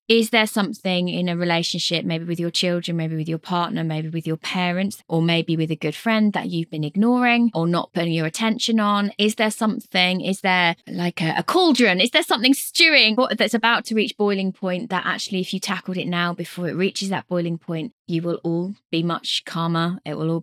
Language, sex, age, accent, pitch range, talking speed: English, female, 20-39, British, 165-225 Hz, 220 wpm